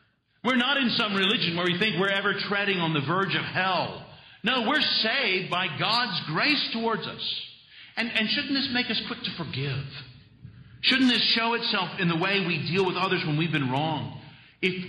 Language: English